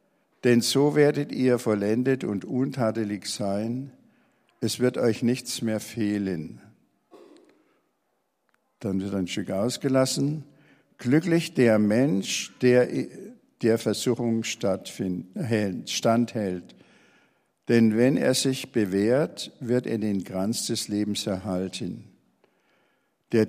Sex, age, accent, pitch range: male, 60-79, German, 110-130 Hz